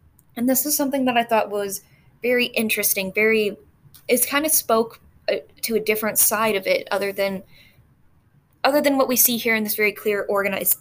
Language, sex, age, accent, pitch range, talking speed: English, female, 20-39, American, 195-235 Hz, 190 wpm